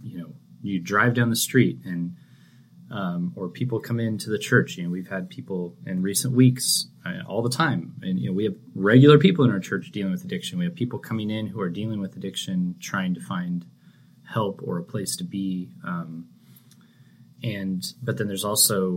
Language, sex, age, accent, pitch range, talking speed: English, male, 20-39, American, 90-150 Hz, 205 wpm